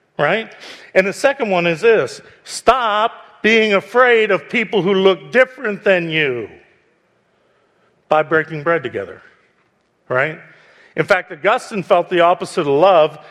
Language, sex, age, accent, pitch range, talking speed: English, male, 50-69, American, 160-215 Hz, 135 wpm